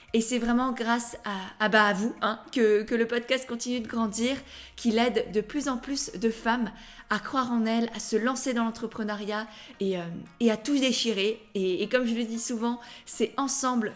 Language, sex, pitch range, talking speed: French, female, 215-250 Hz, 210 wpm